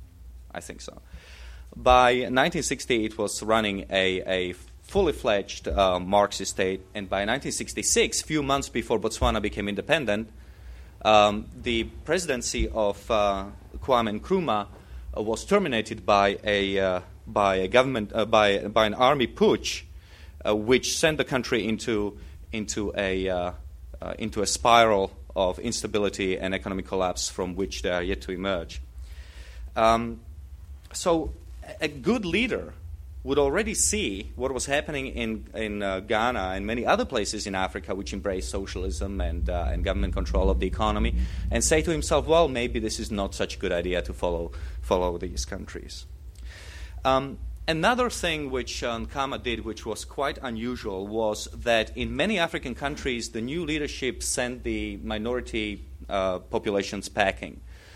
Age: 30-49